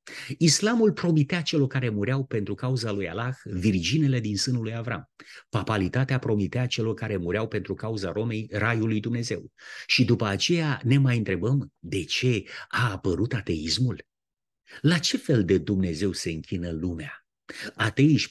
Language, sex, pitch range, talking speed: Romanian, male, 105-140 Hz, 150 wpm